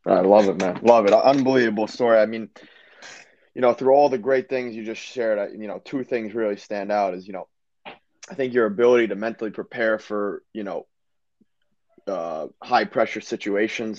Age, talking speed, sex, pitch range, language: 20-39, 190 wpm, male, 100-120 Hz, English